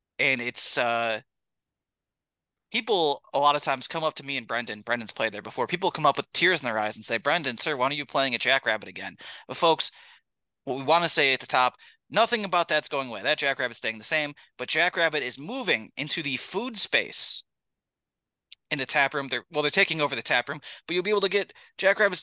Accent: American